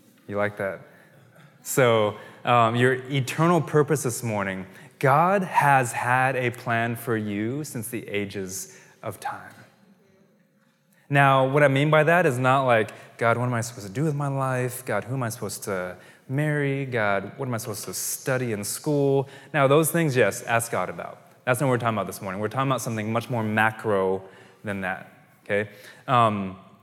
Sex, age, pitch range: male, 20-39, 115-155 Hz